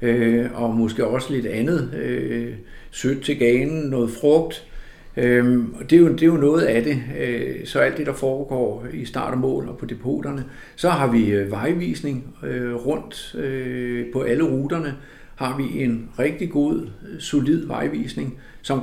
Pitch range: 120-140 Hz